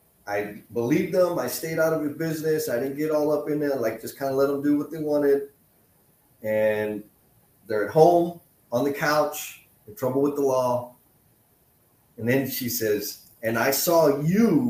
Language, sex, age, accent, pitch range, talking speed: English, male, 30-49, American, 115-150 Hz, 190 wpm